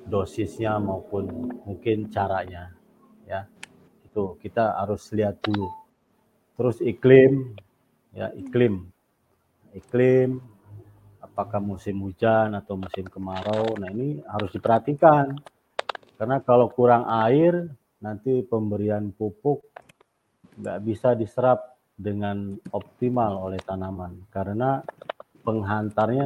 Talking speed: 95 wpm